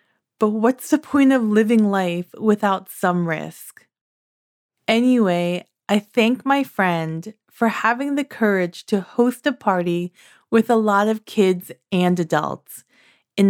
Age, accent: 20-39, American